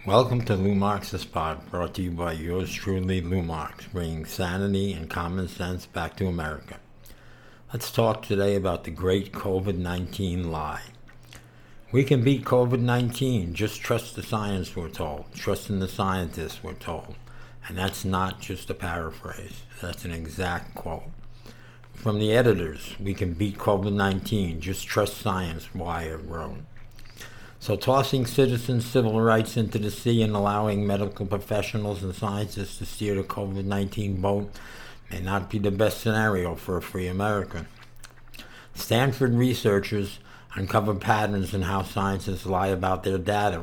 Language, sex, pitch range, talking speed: English, male, 95-110 Hz, 145 wpm